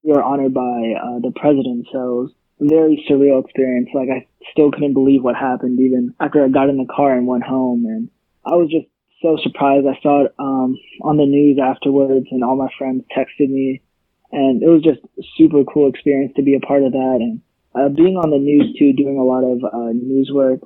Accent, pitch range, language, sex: American, 130-145 Hz, English, male